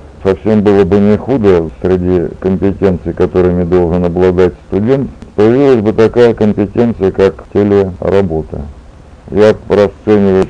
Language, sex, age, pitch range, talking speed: Russian, male, 60-79, 90-105 Hz, 110 wpm